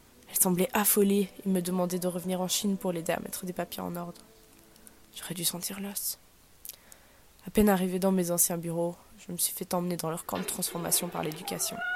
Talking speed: 205 wpm